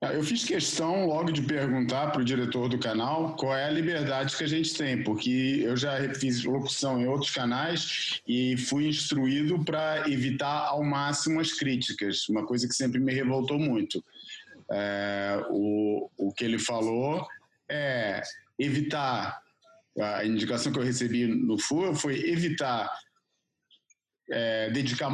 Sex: male